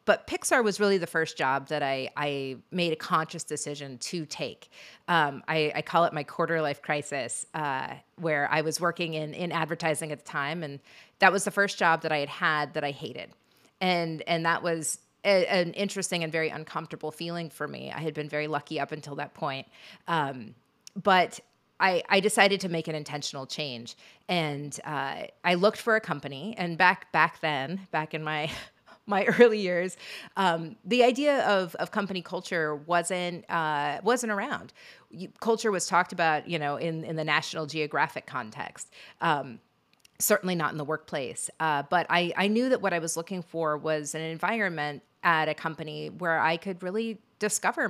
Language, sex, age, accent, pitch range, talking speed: English, female, 30-49, American, 155-185 Hz, 185 wpm